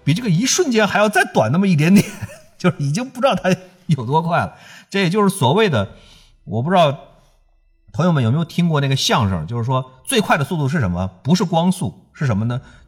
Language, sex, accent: Chinese, male, native